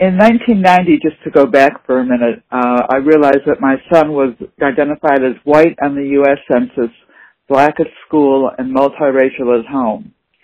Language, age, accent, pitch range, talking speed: English, 60-79, American, 130-155 Hz, 170 wpm